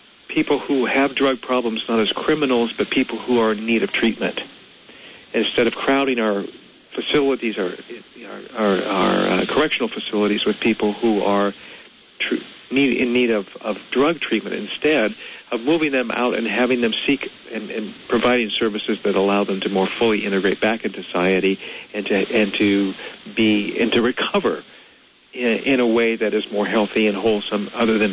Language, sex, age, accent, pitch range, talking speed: English, male, 50-69, American, 105-130 Hz, 175 wpm